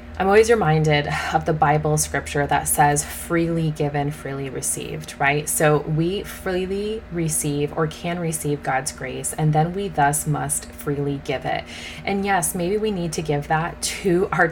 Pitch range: 145-175 Hz